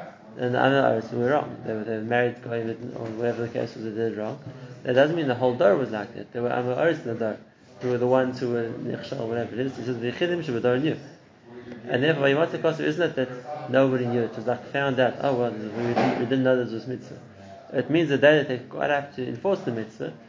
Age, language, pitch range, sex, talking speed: 20-39, English, 120-145 Hz, male, 270 wpm